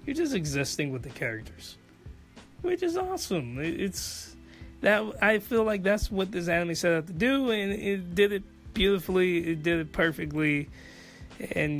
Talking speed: 165 wpm